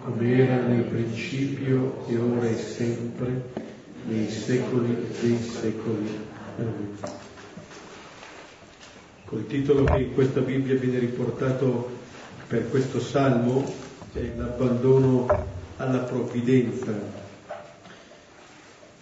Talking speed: 90 wpm